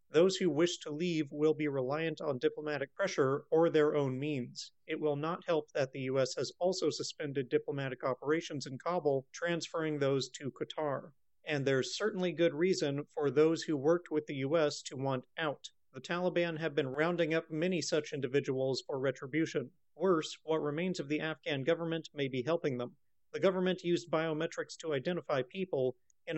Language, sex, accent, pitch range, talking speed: English, male, American, 140-175 Hz, 175 wpm